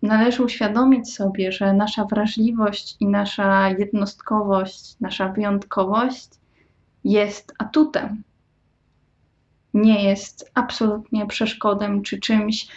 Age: 20-39